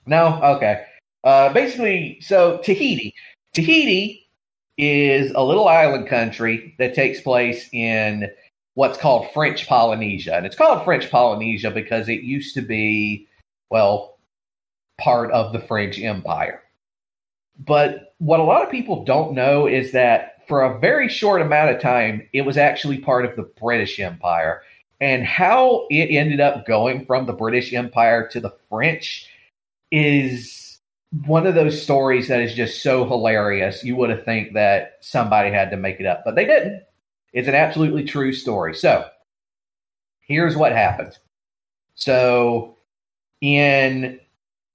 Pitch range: 115-150 Hz